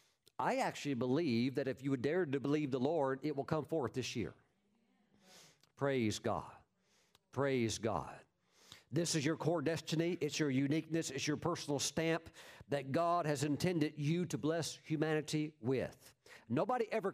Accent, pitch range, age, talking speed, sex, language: American, 130-170 Hz, 50-69, 160 wpm, male, English